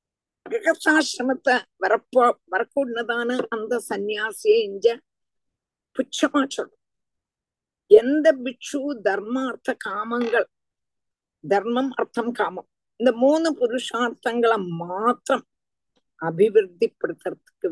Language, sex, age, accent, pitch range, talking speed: Tamil, female, 50-69, native, 220-305 Hz, 65 wpm